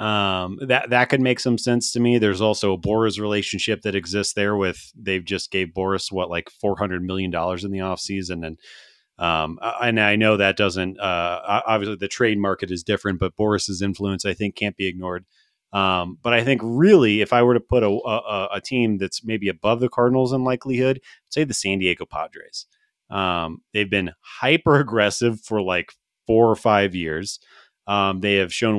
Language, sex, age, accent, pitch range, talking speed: English, male, 30-49, American, 95-120 Hz, 195 wpm